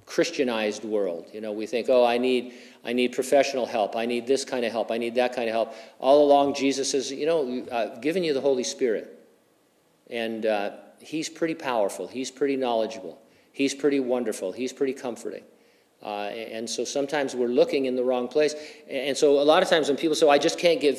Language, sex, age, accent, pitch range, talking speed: English, male, 50-69, American, 115-145 Hz, 210 wpm